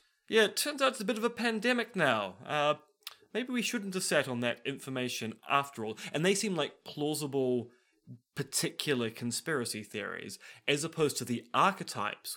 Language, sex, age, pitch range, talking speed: English, male, 20-39, 110-155 Hz, 170 wpm